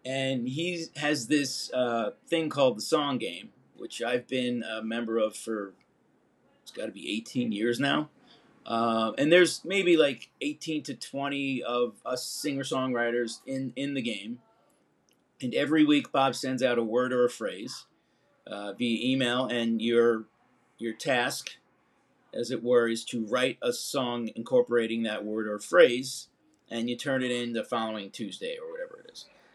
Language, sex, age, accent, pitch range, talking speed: English, male, 40-59, American, 120-150 Hz, 165 wpm